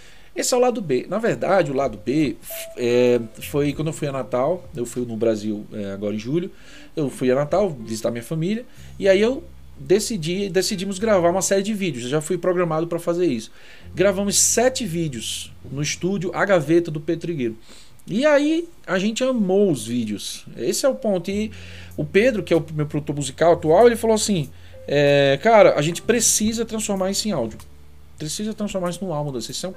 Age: 40-59